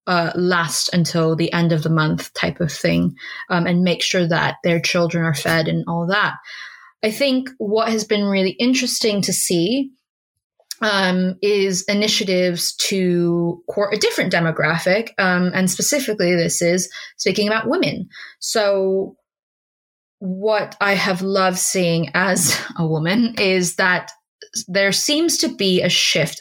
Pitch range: 170-200 Hz